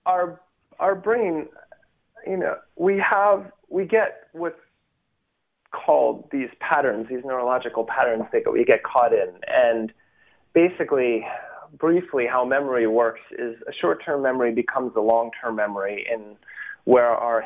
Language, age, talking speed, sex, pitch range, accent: English, 30-49, 140 wpm, male, 115-190 Hz, American